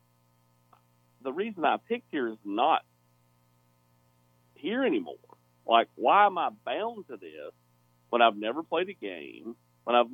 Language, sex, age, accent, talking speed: English, male, 40-59, American, 140 wpm